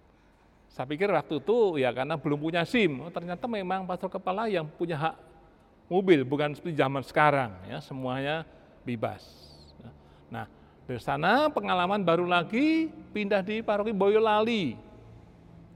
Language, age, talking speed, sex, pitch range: Indonesian, 40-59, 130 wpm, male, 125-175 Hz